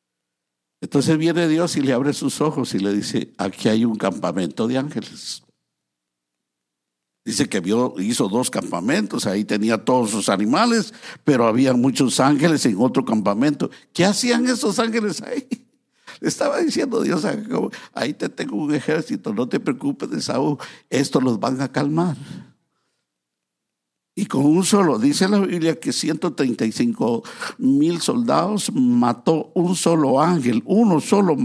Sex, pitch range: male, 140-210 Hz